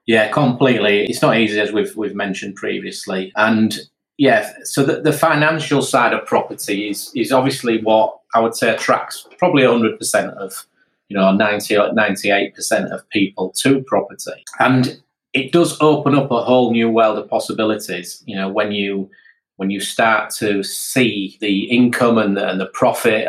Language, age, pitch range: English, 30-49, 105-130 Hz